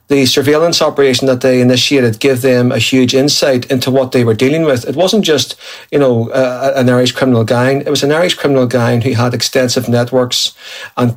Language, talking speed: English, 200 wpm